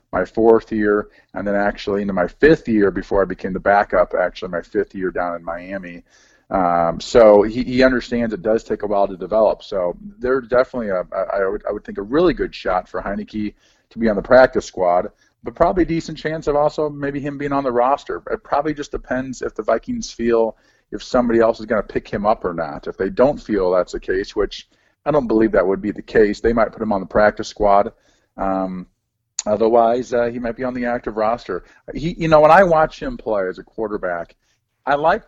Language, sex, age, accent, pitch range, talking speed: English, male, 40-59, American, 95-125 Hz, 230 wpm